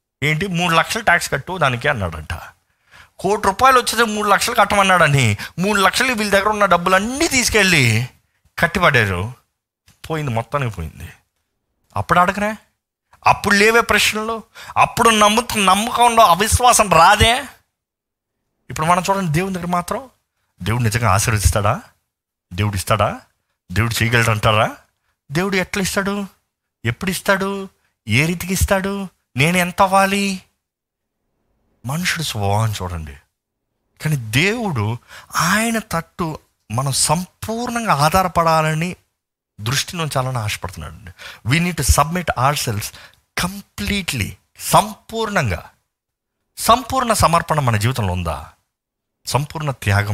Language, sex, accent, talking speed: Telugu, male, native, 100 wpm